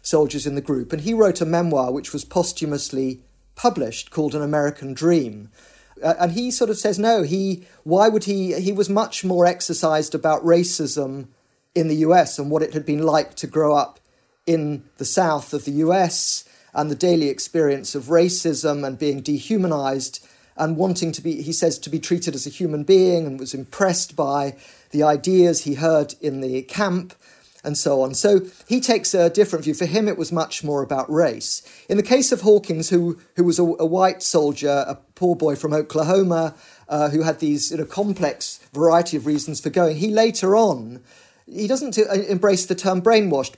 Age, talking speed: 40-59, 195 wpm